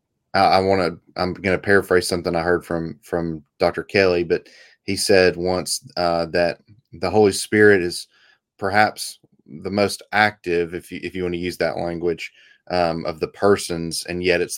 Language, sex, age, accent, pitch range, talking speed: English, male, 30-49, American, 85-100 Hz, 175 wpm